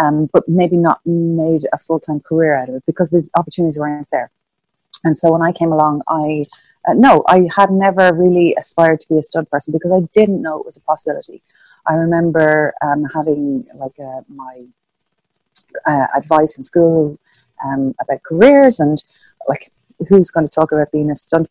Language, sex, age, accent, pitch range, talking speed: English, female, 30-49, Irish, 140-170 Hz, 190 wpm